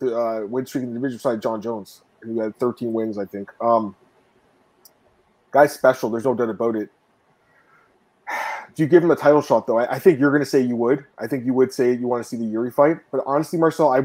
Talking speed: 250 wpm